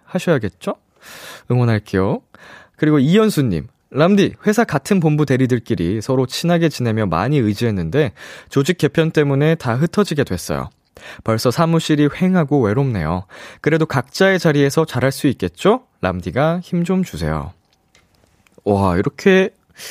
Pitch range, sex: 115-170 Hz, male